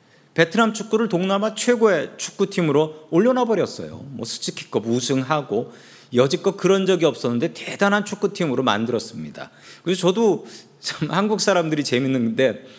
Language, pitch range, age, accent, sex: Korean, 130-195 Hz, 40-59, native, male